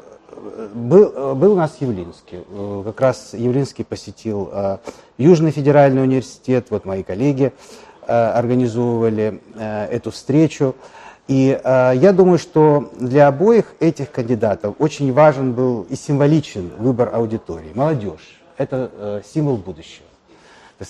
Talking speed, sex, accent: 110 wpm, male, native